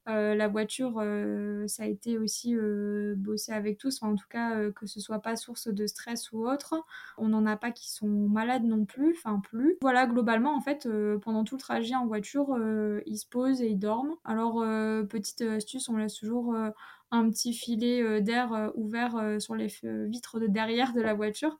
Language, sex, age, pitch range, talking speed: French, female, 20-39, 215-245 Hz, 215 wpm